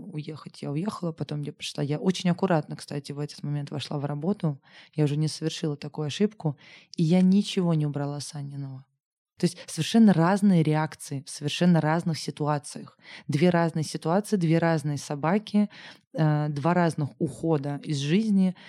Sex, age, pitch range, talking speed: female, 20-39, 150-180 Hz, 155 wpm